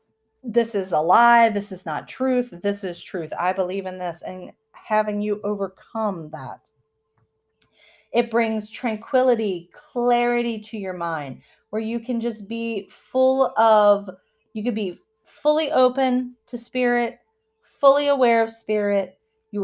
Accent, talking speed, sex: American, 140 wpm, female